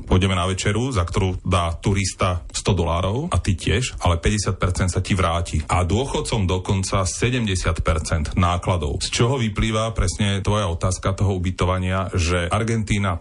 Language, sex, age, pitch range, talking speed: Slovak, male, 30-49, 90-105 Hz, 145 wpm